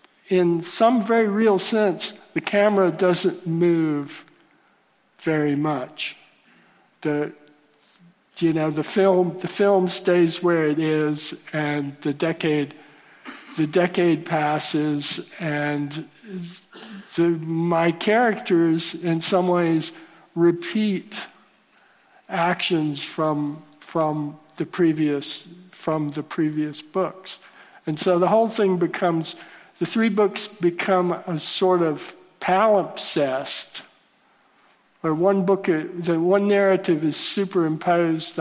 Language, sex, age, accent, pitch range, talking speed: English, male, 50-69, American, 155-185 Hz, 105 wpm